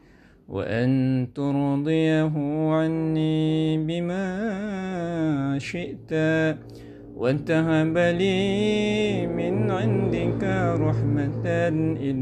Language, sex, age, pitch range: Indonesian, male, 50-69, 135-165 Hz